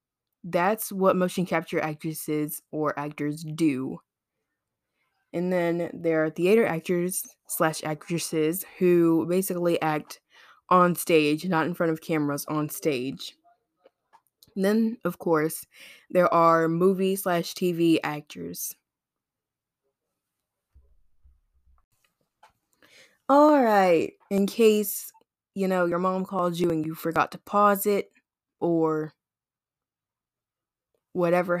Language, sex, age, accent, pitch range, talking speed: English, female, 20-39, American, 160-195 Hz, 105 wpm